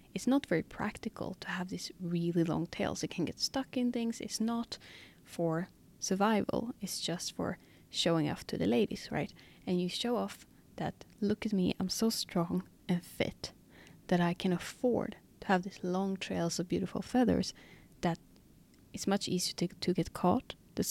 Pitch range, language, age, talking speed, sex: 180-215 Hz, English, 20-39, 180 wpm, female